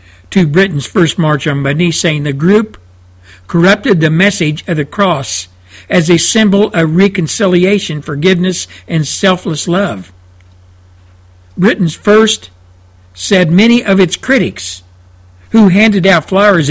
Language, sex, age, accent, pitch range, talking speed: English, male, 60-79, American, 140-210 Hz, 125 wpm